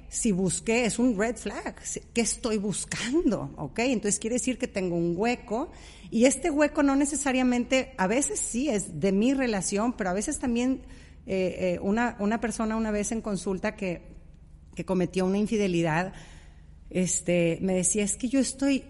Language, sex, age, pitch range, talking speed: Spanish, female, 40-59, 195-255 Hz, 170 wpm